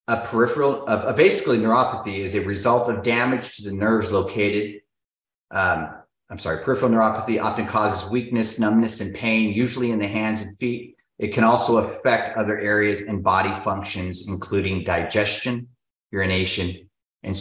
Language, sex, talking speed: English, male, 150 wpm